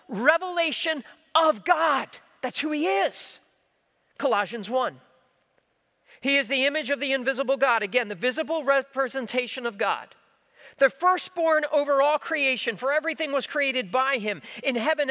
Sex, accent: male, American